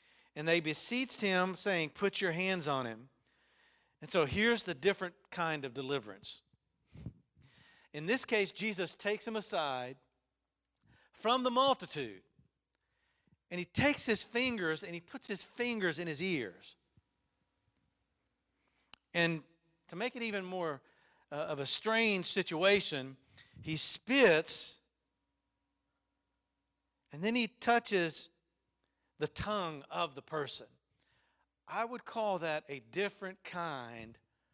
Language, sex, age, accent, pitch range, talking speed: English, male, 50-69, American, 150-205 Hz, 120 wpm